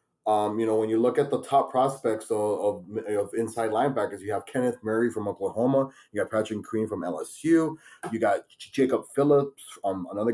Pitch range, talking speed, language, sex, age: 110-165 Hz, 190 wpm, English, male, 20-39